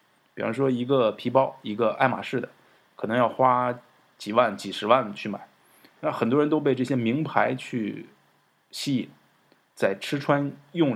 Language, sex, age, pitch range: Chinese, male, 20-39, 120-160 Hz